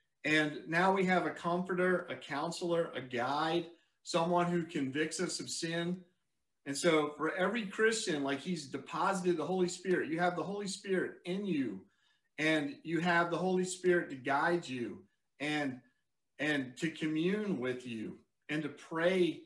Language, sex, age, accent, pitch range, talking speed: English, male, 40-59, American, 140-175 Hz, 160 wpm